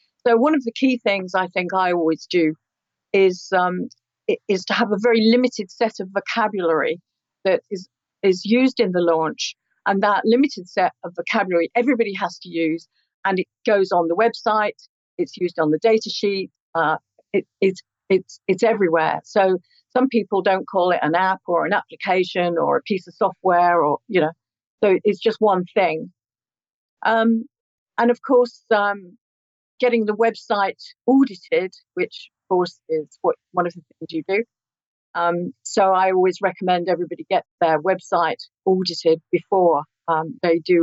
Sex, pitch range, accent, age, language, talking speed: female, 175-225 Hz, British, 50-69, English, 170 wpm